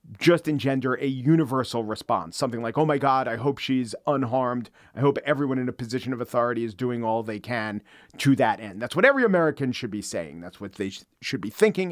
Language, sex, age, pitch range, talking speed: English, male, 40-59, 120-150 Hz, 220 wpm